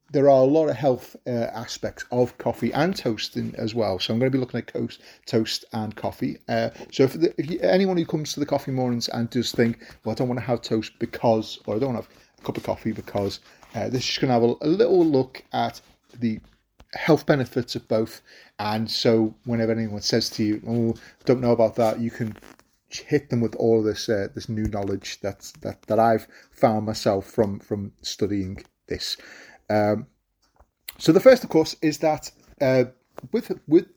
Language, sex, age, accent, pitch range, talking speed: English, male, 30-49, British, 110-130 Hz, 215 wpm